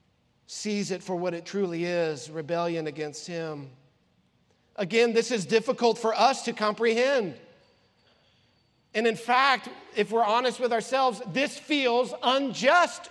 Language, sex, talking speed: English, male, 135 wpm